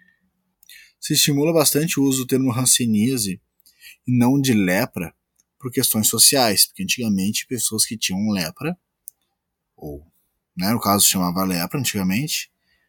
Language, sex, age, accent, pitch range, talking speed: Portuguese, male, 20-39, Brazilian, 100-130 Hz, 135 wpm